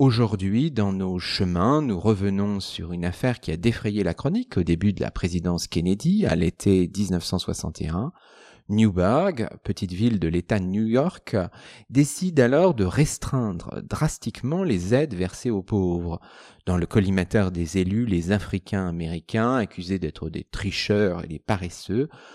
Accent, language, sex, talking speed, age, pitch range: French, French, male, 150 wpm, 40-59, 90-125 Hz